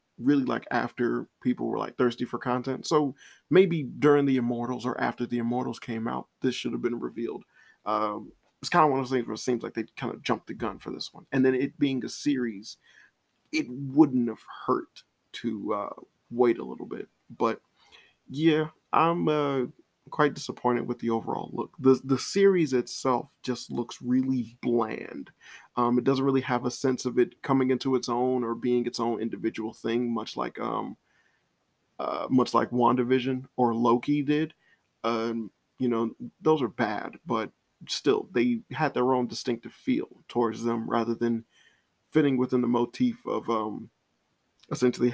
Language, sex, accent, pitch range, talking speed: English, male, American, 120-135 Hz, 180 wpm